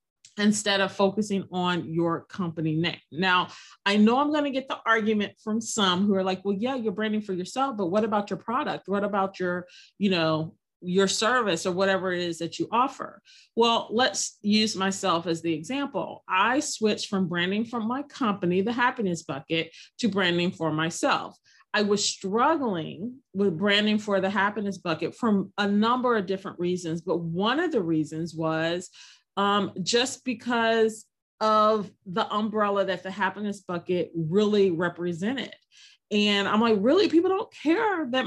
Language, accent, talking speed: English, American, 170 wpm